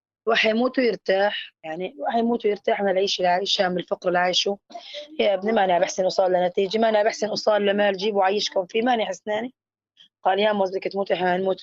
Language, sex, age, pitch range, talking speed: Arabic, female, 20-39, 175-210 Hz, 185 wpm